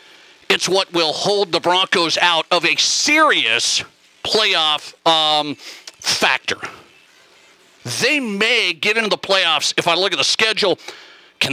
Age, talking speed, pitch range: 50-69, 135 wpm, 170-230 Hz